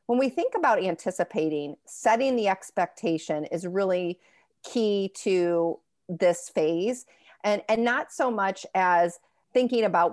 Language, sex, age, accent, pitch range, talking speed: English, female, 40-59, American, 170-205 Hz, 130 wpm